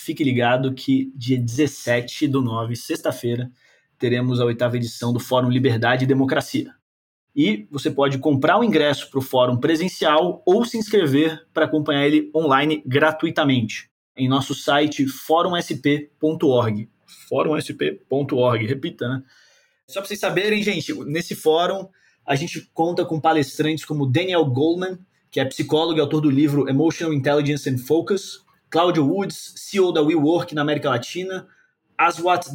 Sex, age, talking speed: male, 20-39, 145 wpm